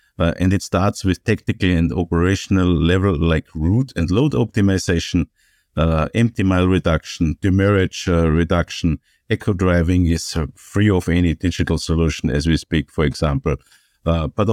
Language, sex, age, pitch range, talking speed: English, male, 50-69, 85-110 Hz, 155 wpm